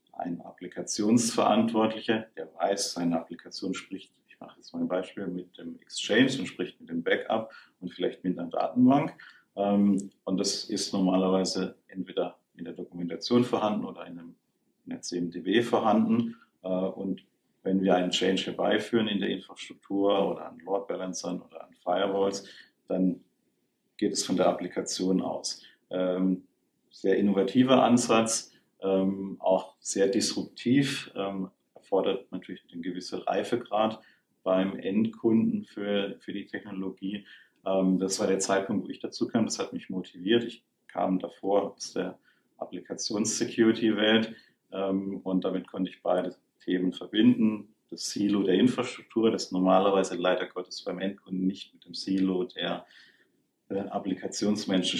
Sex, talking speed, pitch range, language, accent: male, 135 wpm, 95-110 Hz, German, German